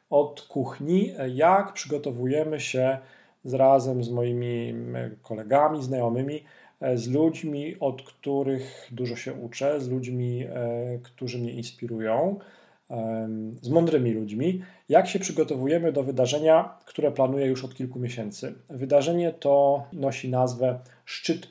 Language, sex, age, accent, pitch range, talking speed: Polish, male, 40-59, native, 120-145 Hz, 115 wpm